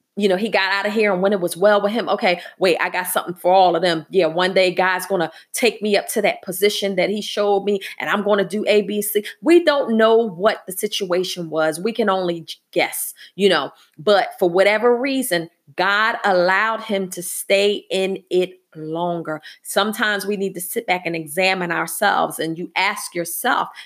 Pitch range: 180-220 Hz